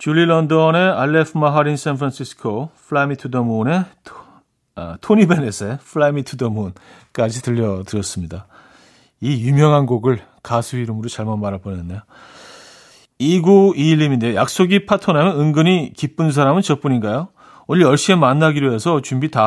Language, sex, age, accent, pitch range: Korean, male, 40-59, native, 125-175 Hz